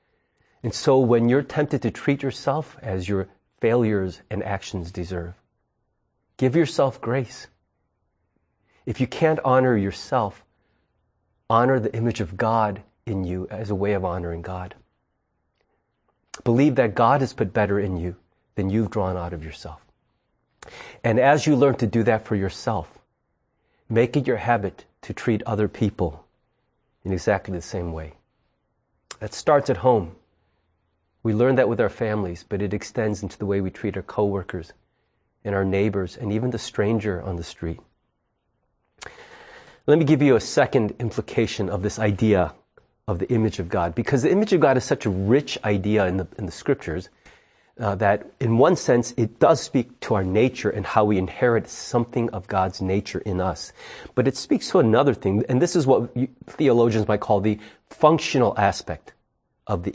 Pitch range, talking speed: 95-120 Hz, 170 wpm